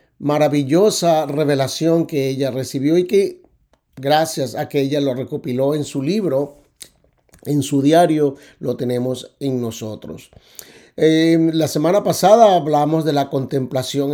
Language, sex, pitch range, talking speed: Spanish, male, 135-165 Hz, 130 wpm